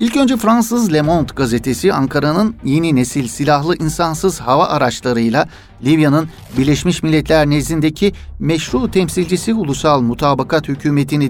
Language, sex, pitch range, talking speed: Turkish, male, 135-170 Hz, 115 wpm